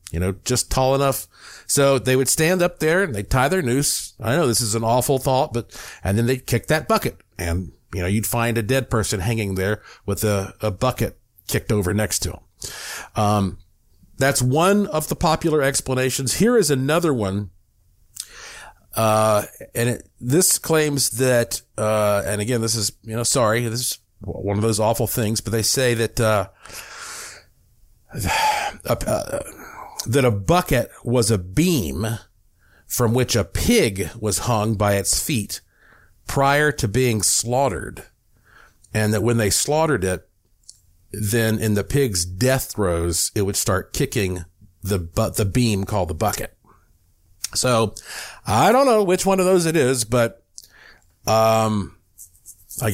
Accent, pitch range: American, 100-130 Hz